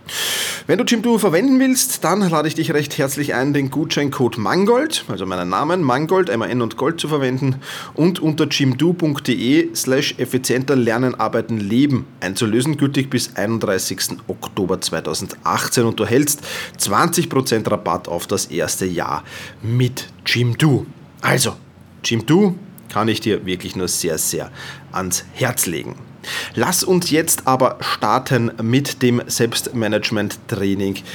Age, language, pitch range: 30-49, German, 115-150 Hz